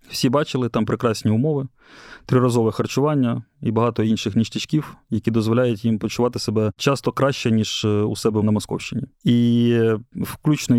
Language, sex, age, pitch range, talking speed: Ukrainian, male, 20-39, 110-130 Hz, 140 wpm